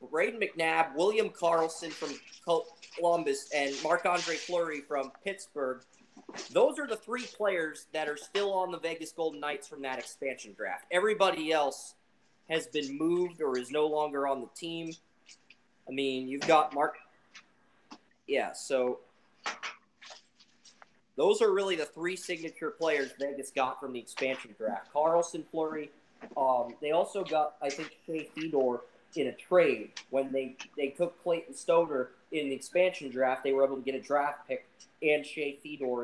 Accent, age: American, 20-39